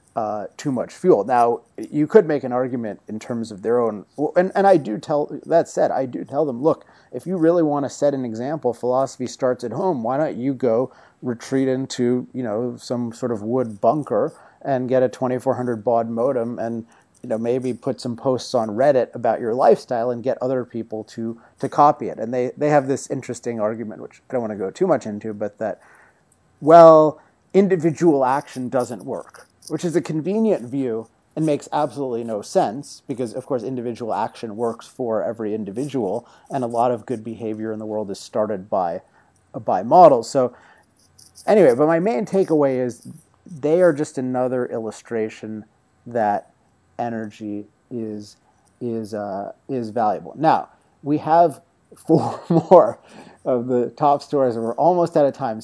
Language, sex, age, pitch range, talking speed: English, male, 30-49, 115-145 Hz, 180 wpm